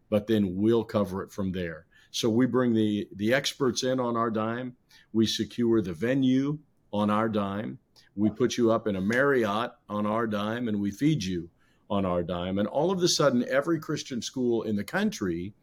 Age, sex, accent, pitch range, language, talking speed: 50-69, male, American, 105-130 Hz, English, 200 wpm